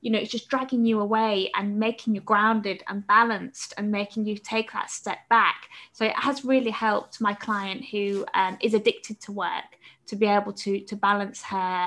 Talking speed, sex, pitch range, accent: 200 wpm, female, 200-230 Hz, British